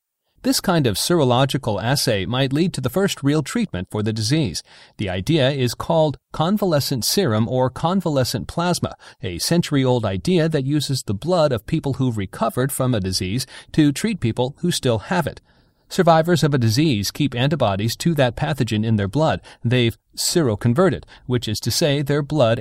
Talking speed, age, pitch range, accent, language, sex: 175 wpm, 40-59, 115-155 Hz, American, English, male